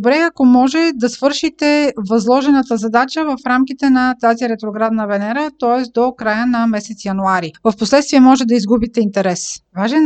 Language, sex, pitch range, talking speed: Bulgarian, female, 225-270 Hz, 155 wpm